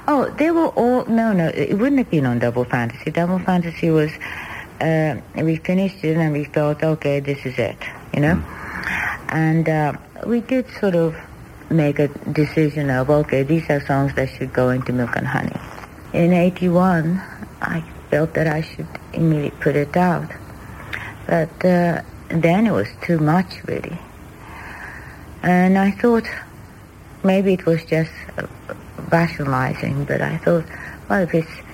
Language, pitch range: English, 145-180 Hz